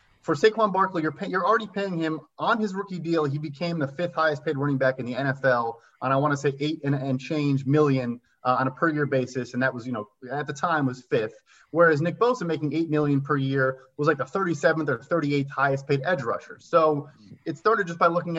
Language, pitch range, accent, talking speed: English, 135-165 Hz, American, 240 wpm